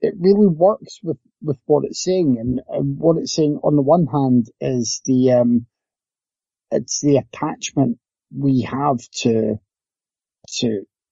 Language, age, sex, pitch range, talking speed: English, 30-49, male, 120-145 Hz, 145 wpm